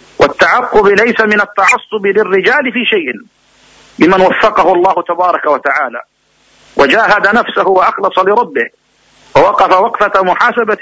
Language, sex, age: Arabic, male, 50-69